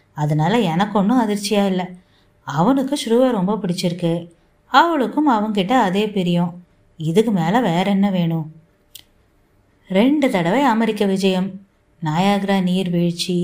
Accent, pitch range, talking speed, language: native, 170-220 Hz, 55 wpm, Tamil